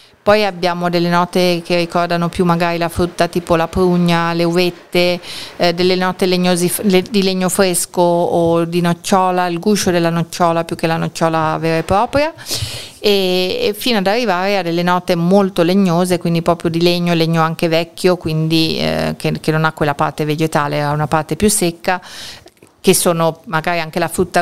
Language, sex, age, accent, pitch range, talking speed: Italian, female, 40-59, native, 155-180 Hz, 175 wpm